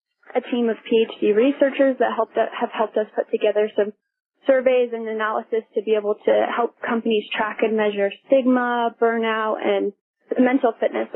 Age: 20-39